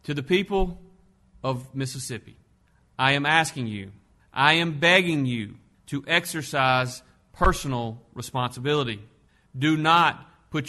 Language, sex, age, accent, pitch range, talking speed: English, male, 40-59, American, 130-170 Hz, 110 wpm